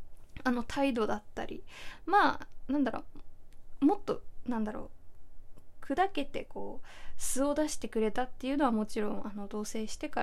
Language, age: Japanese, 20-39